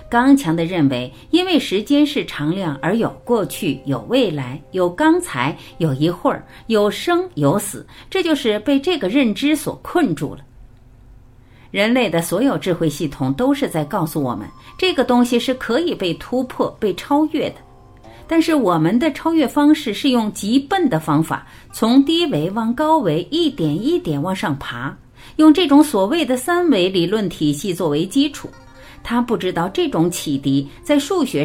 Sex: female